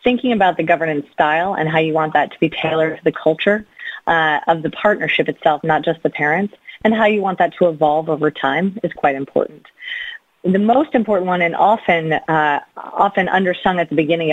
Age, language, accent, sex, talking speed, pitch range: 30-49, English, American, female, 205 wpm, 155-190 Hz